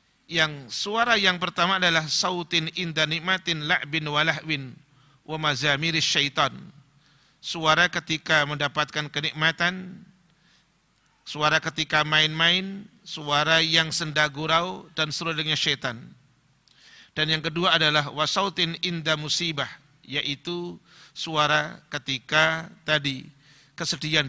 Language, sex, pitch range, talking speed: Indonesian, male, 140-170 Hz, 95 wpm